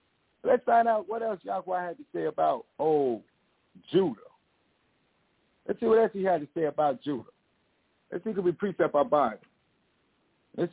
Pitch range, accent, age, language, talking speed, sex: 155-260 Hz, American, 50-69, English, 170 wpm, male